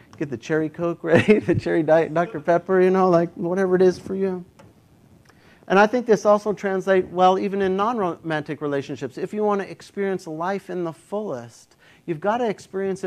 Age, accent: 50-69, American